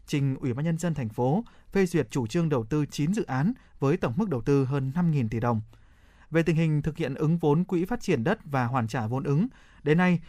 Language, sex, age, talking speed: Vietnamese, male, 20-39, 250 wpm